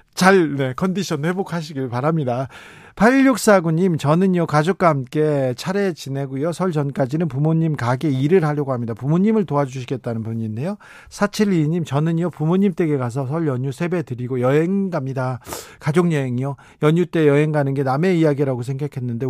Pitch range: 135-180 Hz